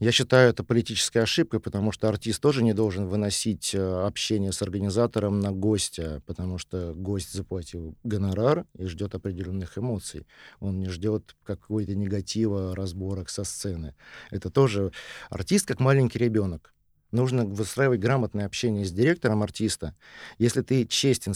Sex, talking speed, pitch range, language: male, 145 wpm, 95-110 Hz, Russian